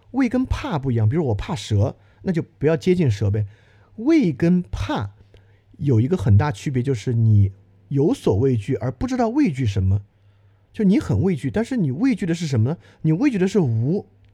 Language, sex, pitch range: Chinese, male, 100-160 Hz